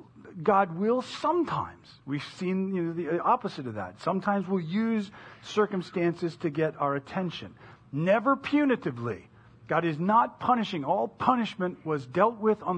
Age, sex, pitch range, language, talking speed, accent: 40-59, male, 150-215 Hz, English, 135 wpm, American